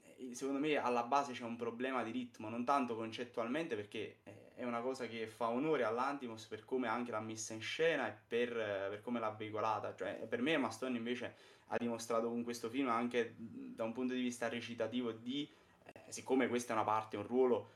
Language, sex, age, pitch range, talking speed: Italian, male, 20-39, 115-130 Hz, 200 wpm